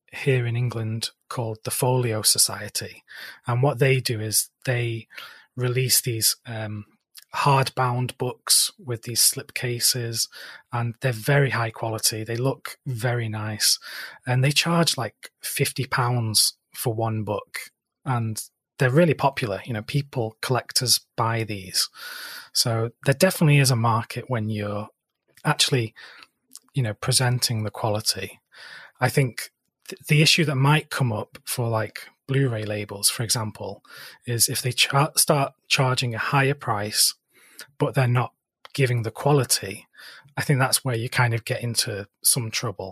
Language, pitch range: English, 115-135 Hz